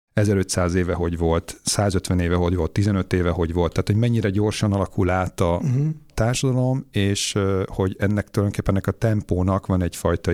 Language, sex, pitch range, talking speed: Hungarian, male, 90-105 Hz, 165 wpm